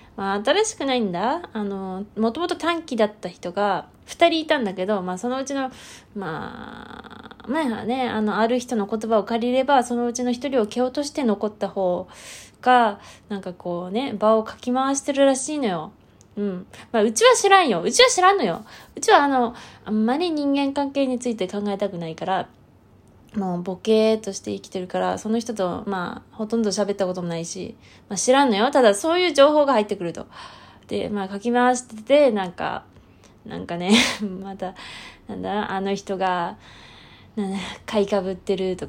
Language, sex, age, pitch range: Japanese, female, 20-39, 195-250 Hz